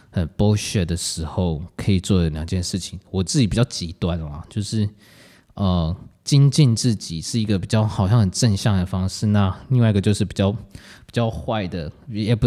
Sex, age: male, 20-39